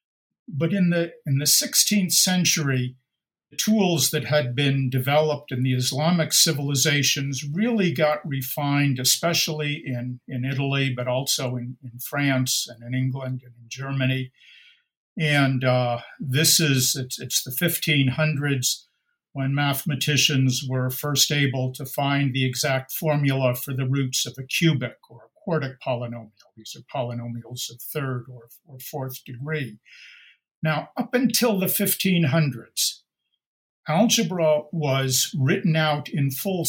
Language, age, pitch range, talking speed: English, 50-69, 130-160 Hz, 135 wpm